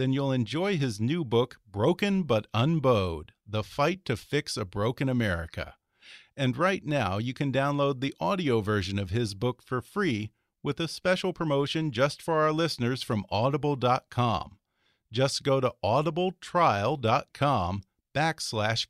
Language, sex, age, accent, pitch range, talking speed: English, male, 40-59, American, 110-150 Hz, 145 wpm